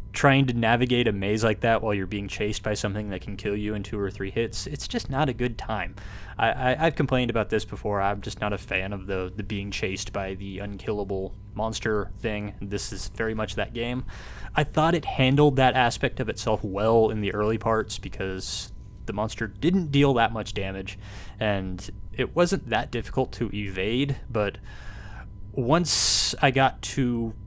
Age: 20-39